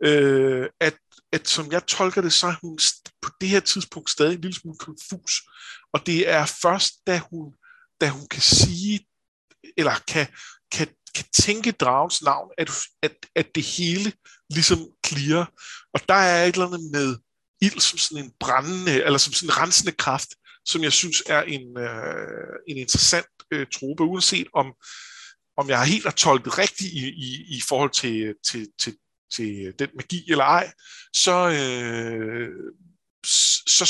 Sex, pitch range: male, 130-185 Hz